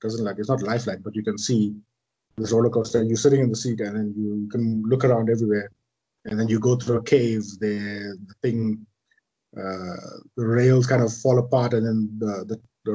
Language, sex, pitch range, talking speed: English, male, 110-125 Hz, 220 wpm